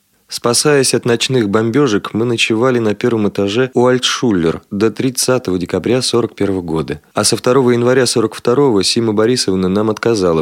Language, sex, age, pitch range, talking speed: Russian, male, 20-39, 95-120 Hz, 145 wpm